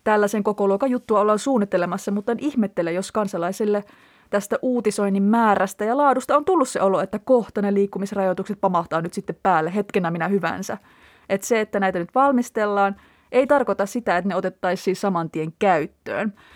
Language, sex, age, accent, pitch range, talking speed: Finnish, female, 30-49, native, 195-245 Hz, 165 wpm